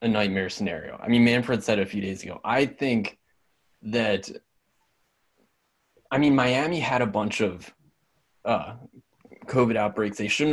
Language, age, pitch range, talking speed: English, 20-39, 110-145 Hz, 150 wpm